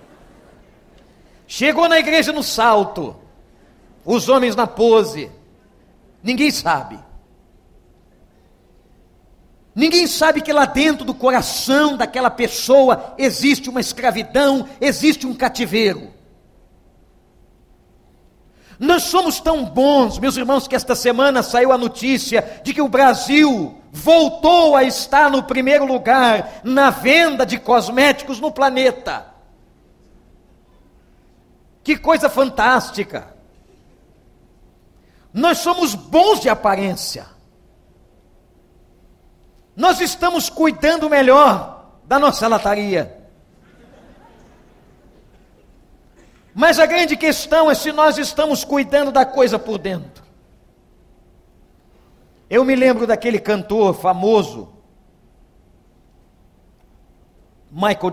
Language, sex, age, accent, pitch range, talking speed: Portuguese, male, 50-69, Brazilian, 220-295 Hz, 90 wpm